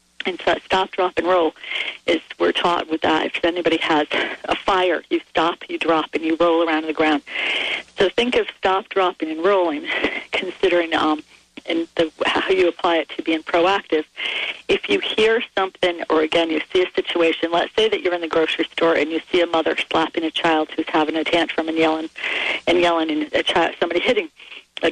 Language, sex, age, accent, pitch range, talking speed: English, female, 40-59, American, 160-205 Hz, 205 wpm